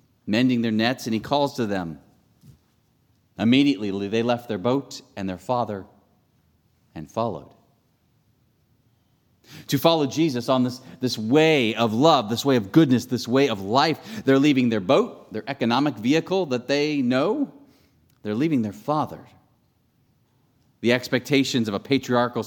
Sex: male